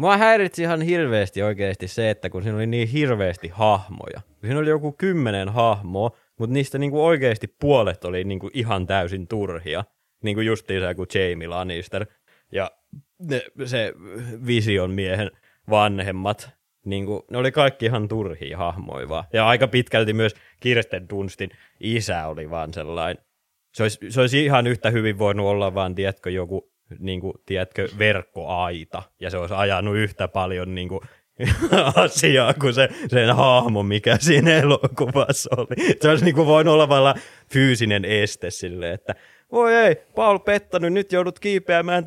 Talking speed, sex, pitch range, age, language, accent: 155 wpm, male, 95-135 Hz, 20-39, Finnish, native